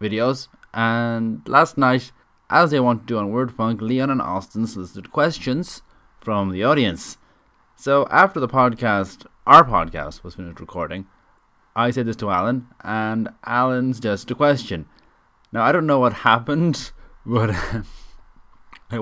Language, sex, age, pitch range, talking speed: English, male, 30-49, 100-125 Hz, 150 wpm